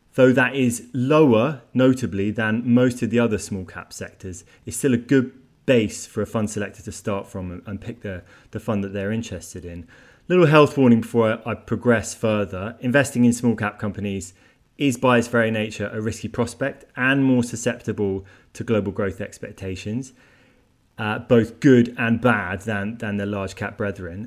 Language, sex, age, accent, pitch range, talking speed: English, male, 20-39, British, 105-125 Hz, 180 wpm